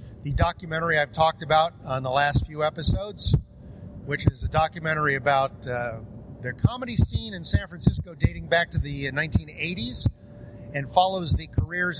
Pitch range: 120-165 Hz